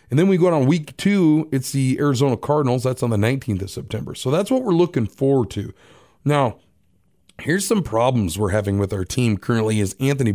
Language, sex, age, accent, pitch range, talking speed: English, male, 30-49, American, 115-150 Hz, 210 wpm